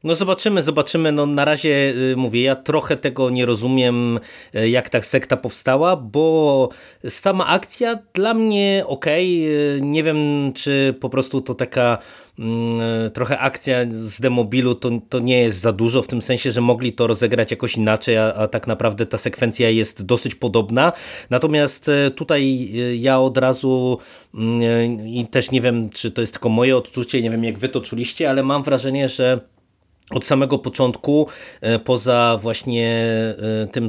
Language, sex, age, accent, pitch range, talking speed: Polish, male, 30-49, native, 115-130 Hz, 155 wpm